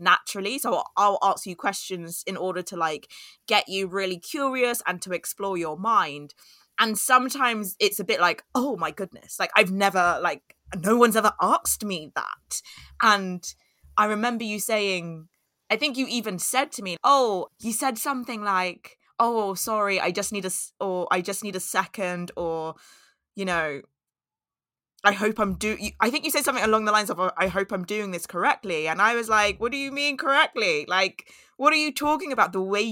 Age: 20-39